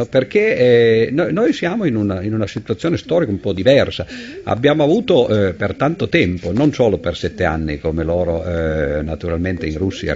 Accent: native